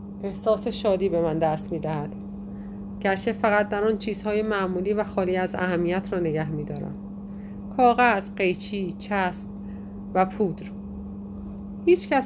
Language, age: Persian, 30-49